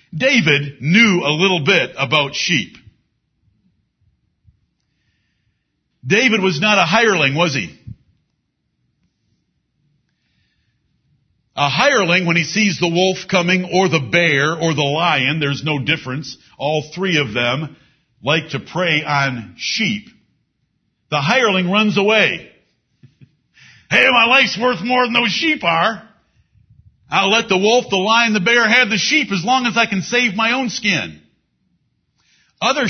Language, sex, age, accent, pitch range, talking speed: English, male, 50-69, American, 155-220 Hz, 135 wpm